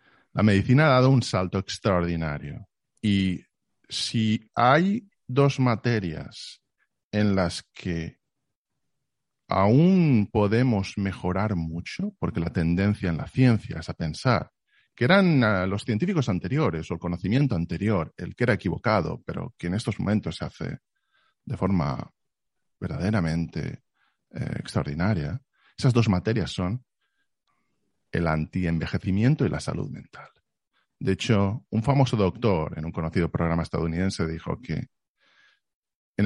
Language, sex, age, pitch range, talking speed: Spanish, male, 50-69, 85-120 Hz, 125 wpm